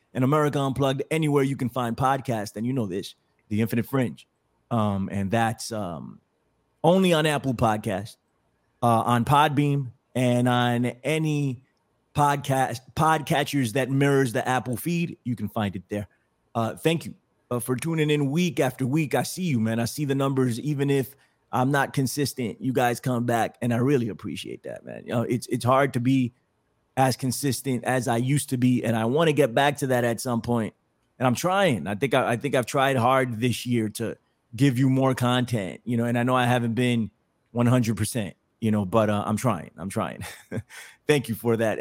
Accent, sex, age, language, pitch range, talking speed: American, male, 30-49, English, 120-145 Hz, 200 wpm